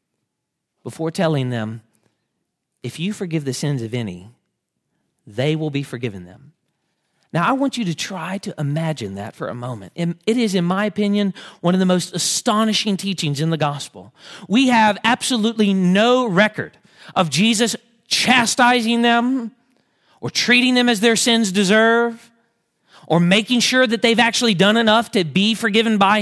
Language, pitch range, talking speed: English, 150-235 Hz, 160 wpm